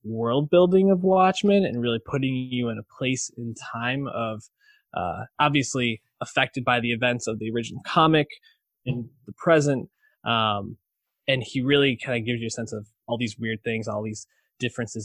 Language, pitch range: English, 110-135 Hz